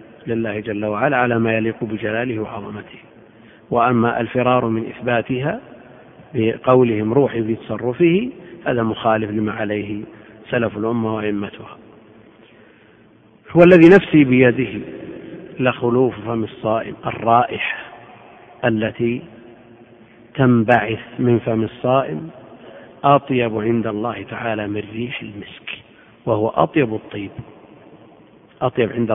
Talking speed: 95 wpm